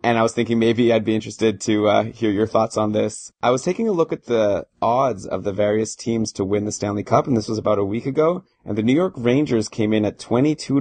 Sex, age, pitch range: male, 20-39, 100-120 Hz